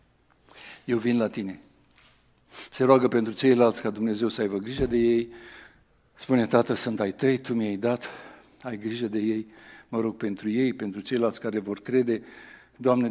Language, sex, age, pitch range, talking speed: Romanian, male, 60-79, 105-125 Hz, 170 wpm